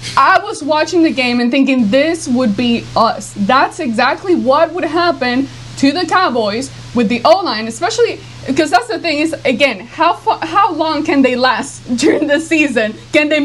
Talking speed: 185 wpm